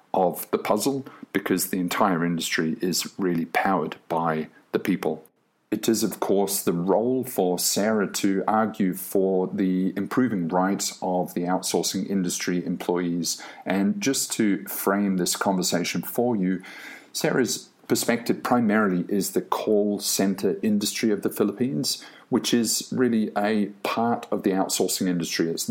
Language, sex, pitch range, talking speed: English, male, 90-105 Hz, 140 wpm